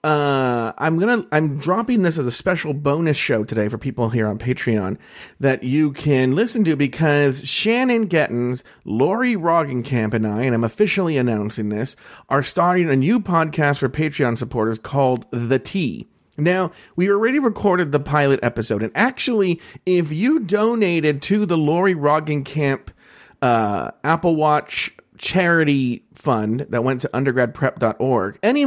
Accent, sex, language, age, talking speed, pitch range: American, male, English, 40-59, 155 wpm, 125-180 Hz